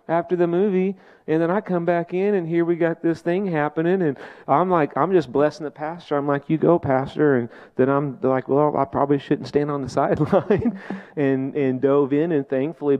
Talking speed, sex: 215 wpm, male